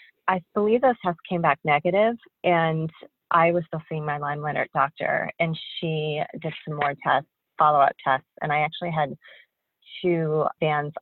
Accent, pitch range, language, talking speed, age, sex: American, 145-170 Hz, English, 165 wpm, 30-49, female